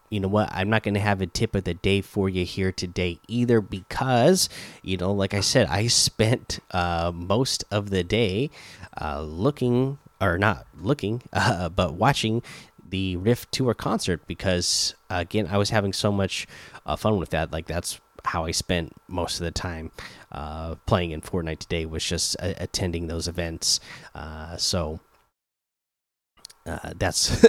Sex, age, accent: male, 20-39, American